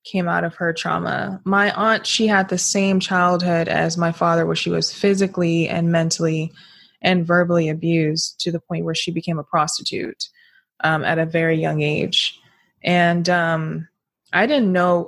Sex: female